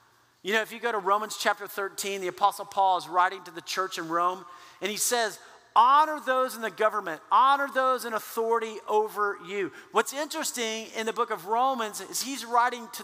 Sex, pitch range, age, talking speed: male, 185-240 Hz, 50-69, 200 wpm